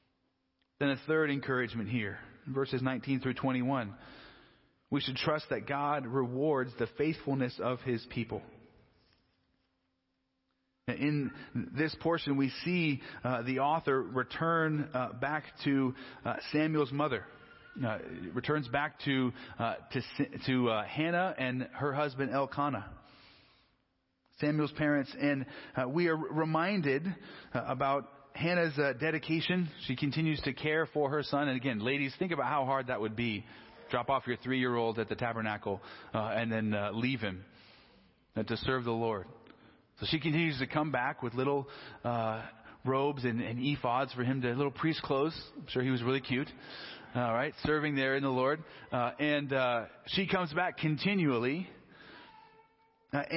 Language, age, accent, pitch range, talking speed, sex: English, 40-59, American, 125-150 Hz, 150 wpm, male